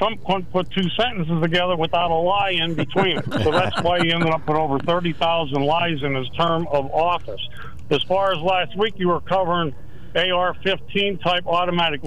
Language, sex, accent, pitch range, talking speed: English, male, American, 155-190 Hz, 185 wpm